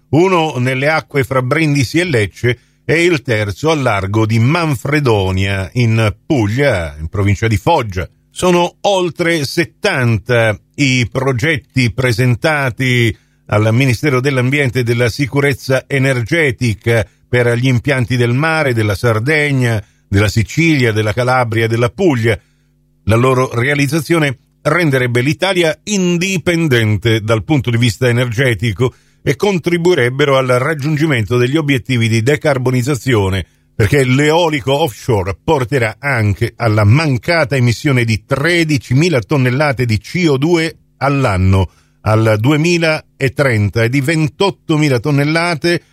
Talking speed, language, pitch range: 115 wpm, Italian, 115-155 Hz